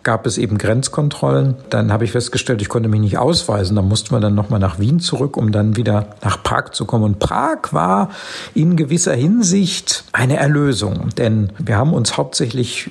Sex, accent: male, German